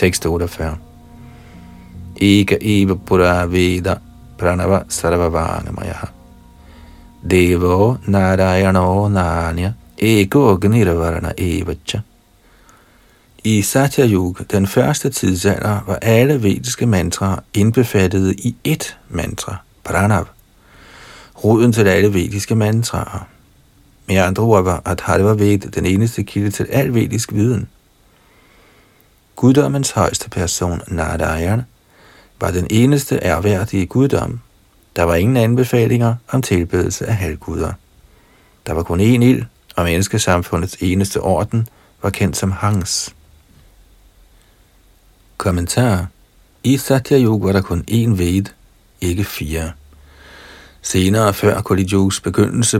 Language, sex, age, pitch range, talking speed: Danish, male, 50-69, 90-110 Hz, 110 wpm